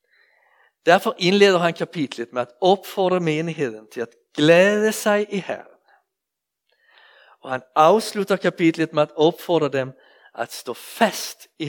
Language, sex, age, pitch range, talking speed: Danish, male, 50-69, 140-195 Hz, 135 wpm